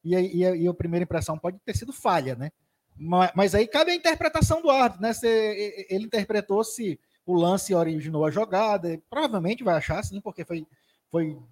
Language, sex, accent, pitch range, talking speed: Portuguese, male, Brazilian, 165-230 Hz, 190 wpm